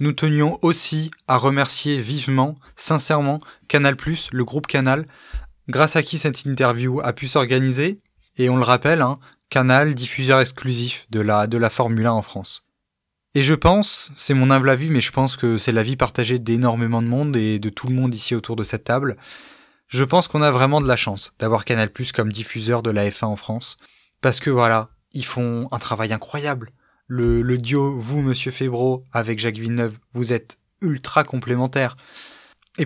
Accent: French